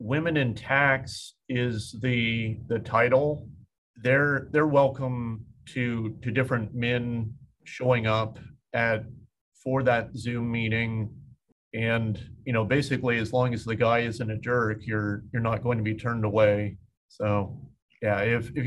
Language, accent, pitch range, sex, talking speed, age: English, American, 115-135 Hz, male, 145 wpm, 40-59